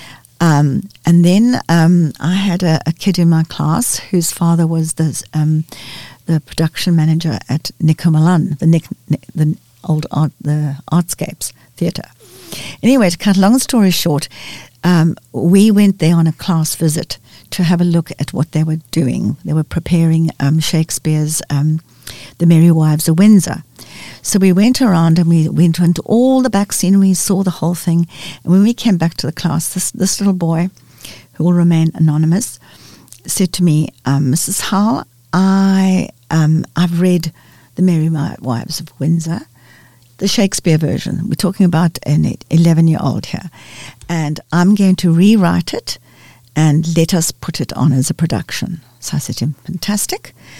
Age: 60-79